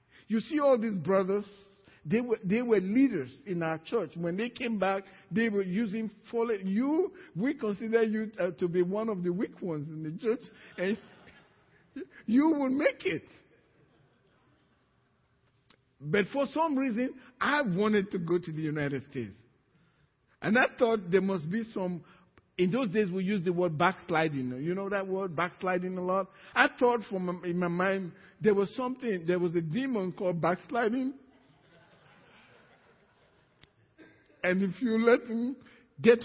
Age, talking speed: 50-69, 155 wpm